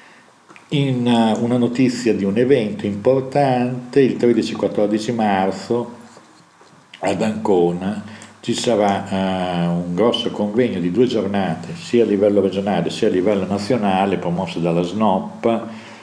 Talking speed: 120 wpm